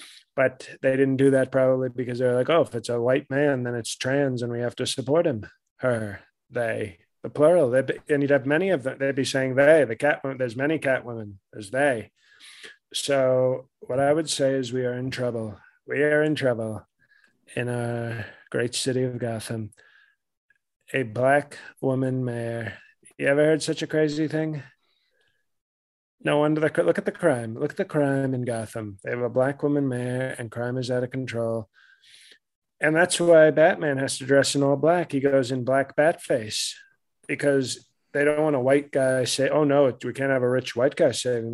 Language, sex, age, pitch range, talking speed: English, male, 20-39, 125-145 Hz, 200 wpm